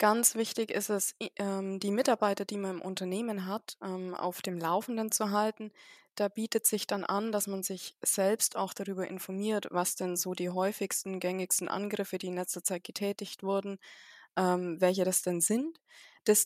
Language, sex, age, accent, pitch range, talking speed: German, female, 20-39, German, 185-210 Hz, 170 wpm